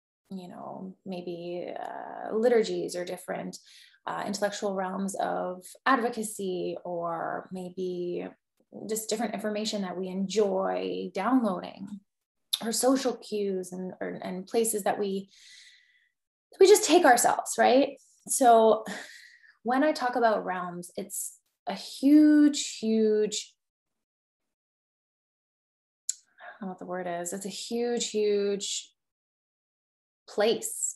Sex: female